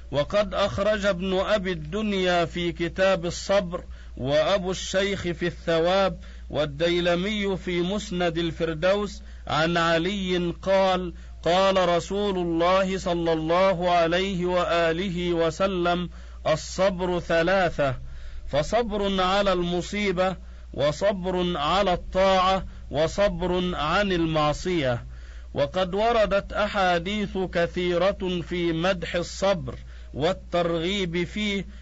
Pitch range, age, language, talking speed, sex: 165-190 Hz, 50-69, Arabic, 90 wpm, male